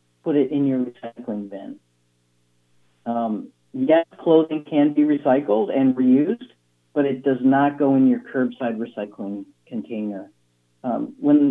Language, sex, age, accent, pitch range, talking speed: English, male, 50-69, American, 115-145 Hz, 135 wpm